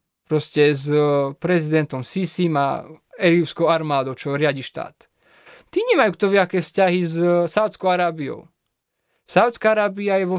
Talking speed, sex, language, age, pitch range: 125 wpm, male, Slovak, 20-39, 155-195 Hz